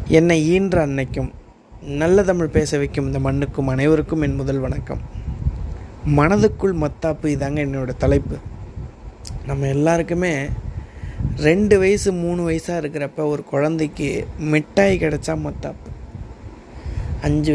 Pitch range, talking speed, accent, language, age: 140-170 Hz, 105 wpm, native, Tamil, 20-39